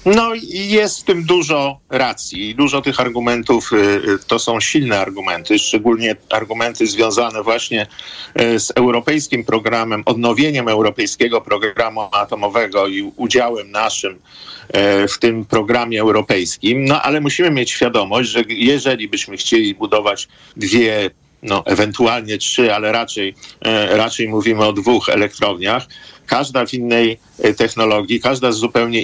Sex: male